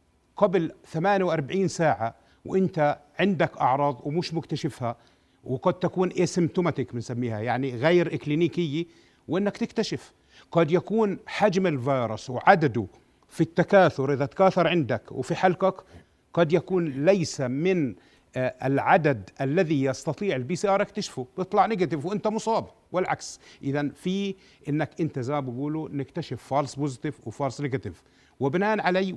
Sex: male